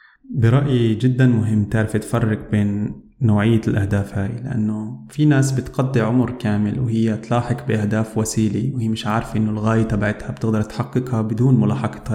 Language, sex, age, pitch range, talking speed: Arabic, male, 20-39, 105-120 Hz, 145 wpm